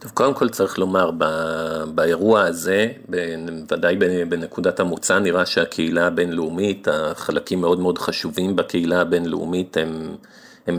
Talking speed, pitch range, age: 115 wpm, 85-95 Hz, 50-69